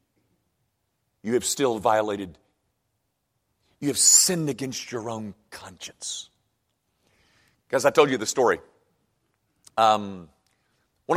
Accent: American